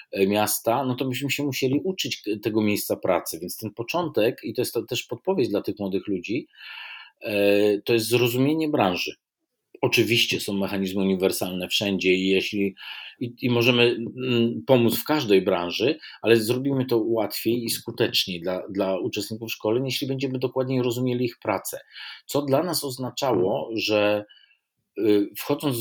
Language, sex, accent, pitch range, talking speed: Polish, male, native, 105-130 Hz, 145 wpm